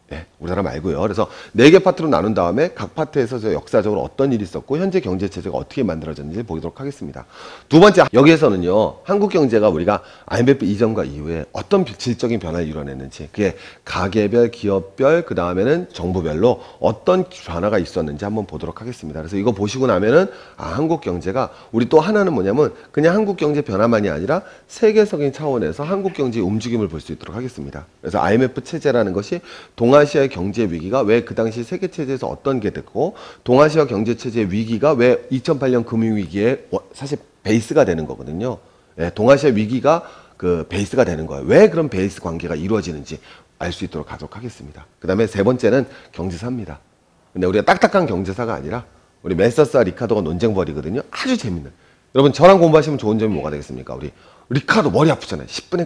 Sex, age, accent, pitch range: male, 40-59, native, 85-140 Hz